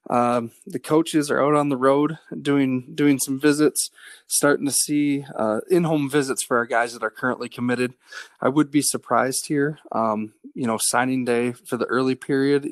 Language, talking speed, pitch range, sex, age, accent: English, 190 wpm, 120-145 Hz, male, 20-39, American